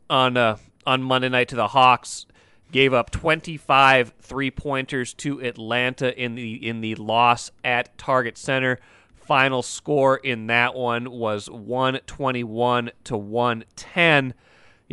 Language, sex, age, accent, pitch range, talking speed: English, male, 30-49, American, 120-145 Hz, 125 wpm